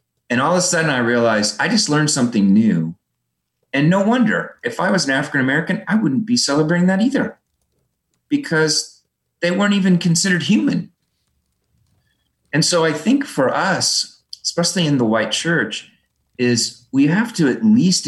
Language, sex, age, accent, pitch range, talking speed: English, male, 40-59, American, 105-175 Hz, 165 wpm